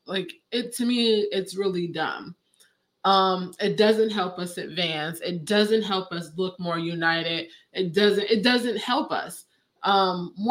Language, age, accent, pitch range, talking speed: English, 20-39, American, 180-225 Hz, 155 wpm